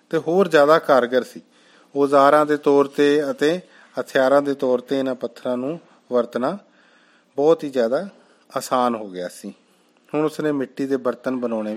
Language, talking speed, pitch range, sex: Punjabi, 160 wpm, 130-155 Hz, male